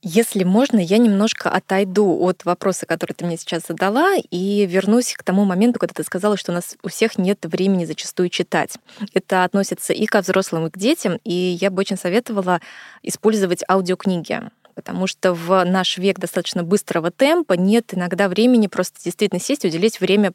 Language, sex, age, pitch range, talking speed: Russian, female, 20-39, 180-220 Hz, 180 wpm